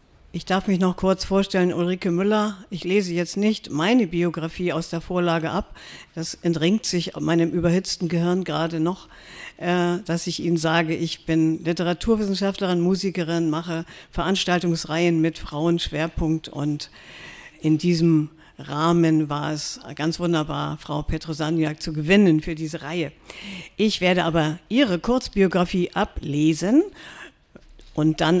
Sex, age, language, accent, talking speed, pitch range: female, 50-69, German, German, 130 wpm, 160-195 Hz